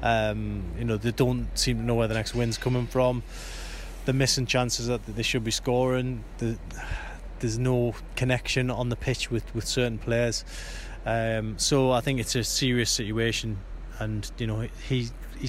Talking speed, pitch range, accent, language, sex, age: 180 wpm, 110-125 Hz, British, English, male, 20-39